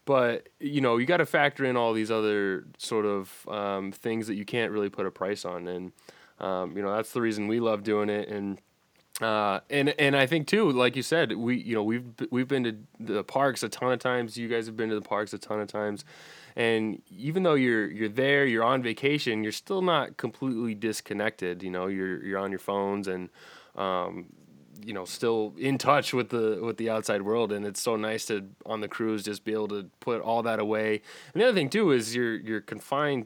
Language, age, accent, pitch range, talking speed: English, 20-39, American, 100-120 Hz, 230 wpm